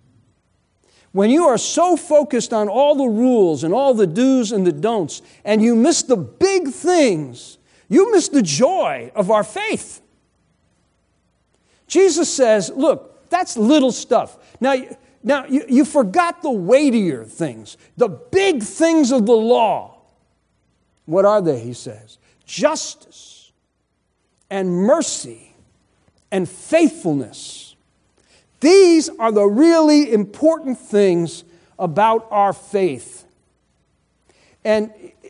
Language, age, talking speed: English, 50-69, 115 wpm